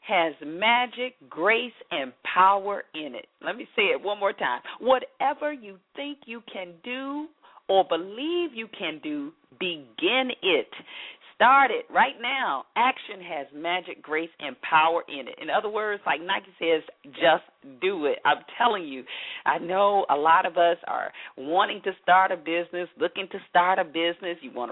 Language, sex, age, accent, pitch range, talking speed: English, female, 40-59, American, 165-240 Hz, 170 wpm